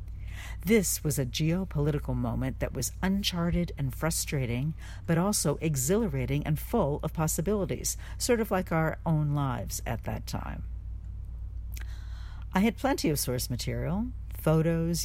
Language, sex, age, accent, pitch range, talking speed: English, female, 60-79, American, 105-160 Hz, 130 wpm